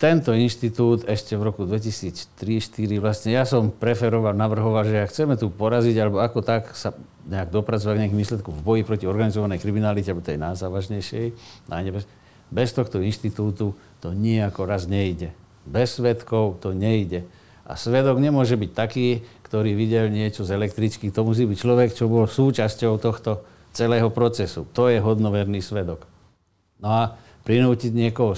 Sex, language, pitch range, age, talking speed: male, Slovak, 105-120 Hz, 50-69, 150 wpm